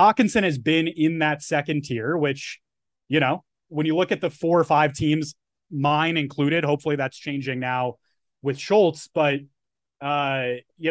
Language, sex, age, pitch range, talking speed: English, male, 30-49, 140-175 Hz, 165 wpm